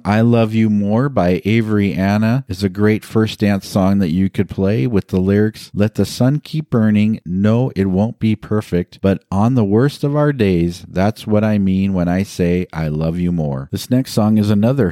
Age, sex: 40-59, male